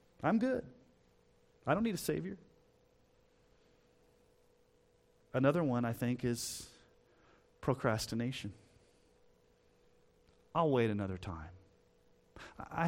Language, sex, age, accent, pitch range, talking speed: English, male, 30-49, American, 110-165 Hz, 85 wpm